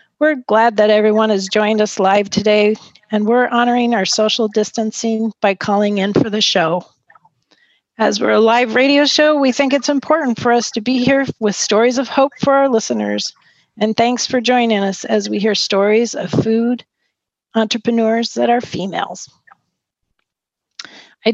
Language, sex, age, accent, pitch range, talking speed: English, female, 40-59, American, 210-245 Hz, 165 wpm